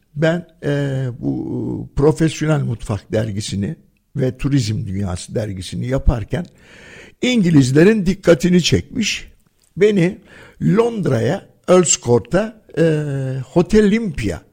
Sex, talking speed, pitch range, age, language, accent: male, 85 wpm, 130-195 Hz, 60-79, Turkish, native